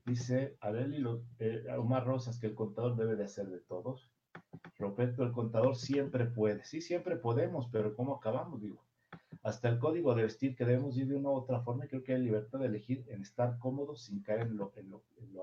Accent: Mexican